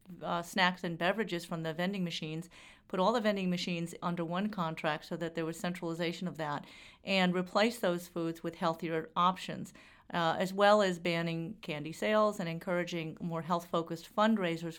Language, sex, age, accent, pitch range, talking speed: English, female, 40-59, American, 170-205 Hz, 170 wpm